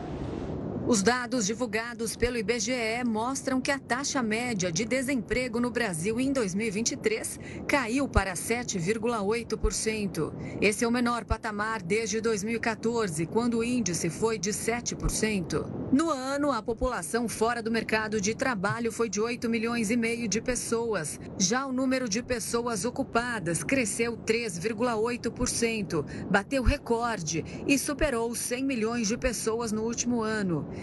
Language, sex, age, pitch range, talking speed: Portuguese, female, 40-59, 215-245 Hz, 130 wpm